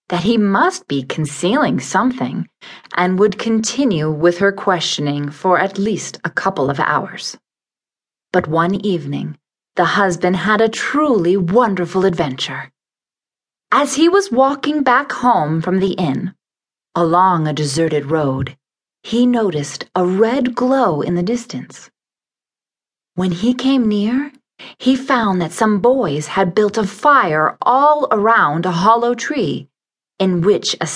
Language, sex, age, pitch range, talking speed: Italian, female, 30-49, 170-245 Hz, 140 wpm